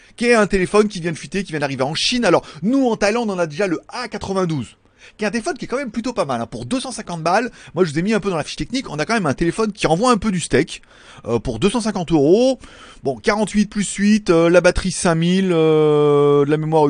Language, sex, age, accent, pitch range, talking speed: French, male, 30-49, French, 155-215 Hz, 270 wpm